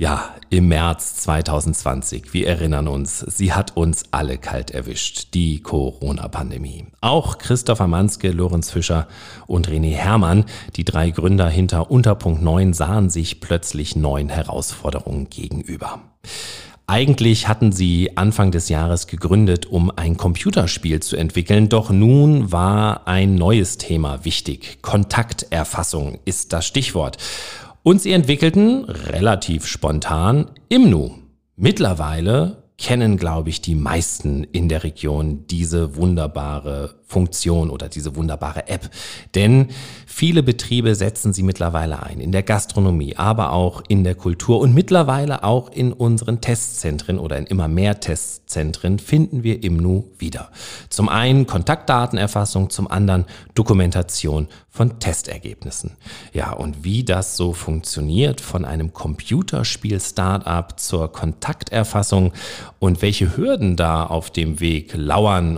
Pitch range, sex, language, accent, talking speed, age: 80-105 Hz, male, German, German, 125 wpm, 40-59